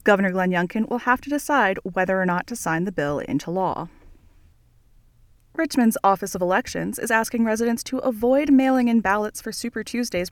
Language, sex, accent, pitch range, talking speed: English, female, American, 180-240 Hz, 180 wpm